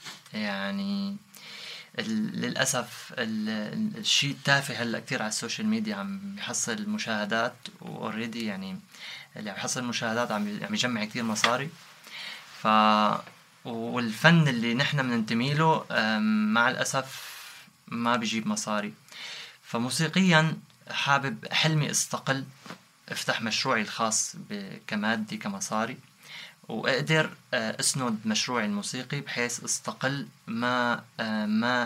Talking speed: 90 wpm